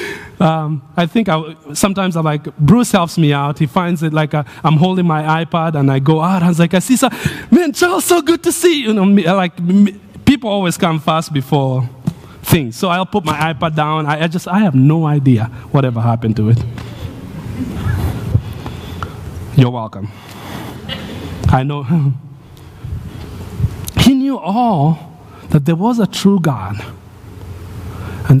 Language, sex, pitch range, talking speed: English, male, 110-170 Hz, 165 wpm